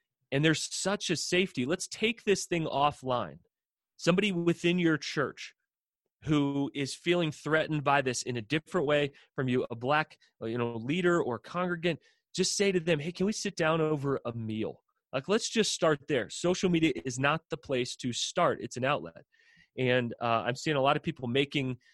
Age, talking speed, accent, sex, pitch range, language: 30-49, 190 wpm, American, male, 125-170 Hz, English